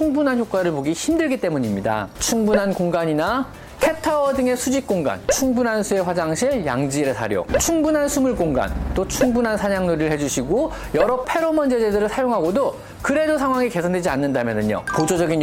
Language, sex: Korean, male